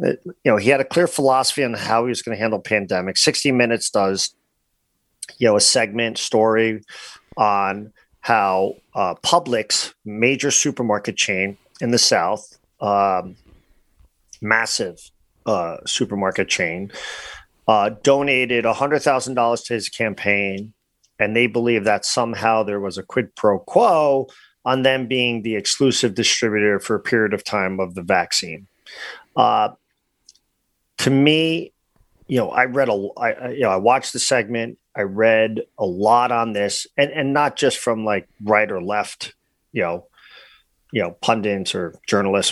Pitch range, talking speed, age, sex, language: 105-130 Hz, 155 wpm, 40-59, male, English